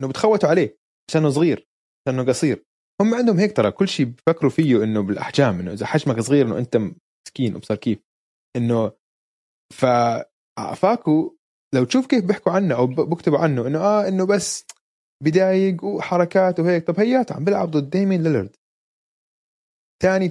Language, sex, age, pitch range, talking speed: Arabic, male, 20-39, 130-180 Hz, 150 wpm